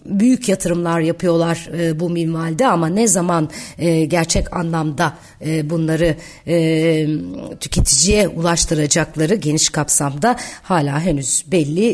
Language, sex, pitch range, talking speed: Turkish, female, 160-220 Hz, 90 wpm